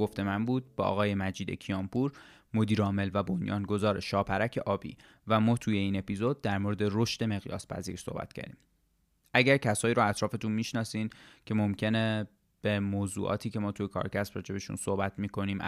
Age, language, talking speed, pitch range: 20-39, Persian, 150 wpm, 100-115 Hz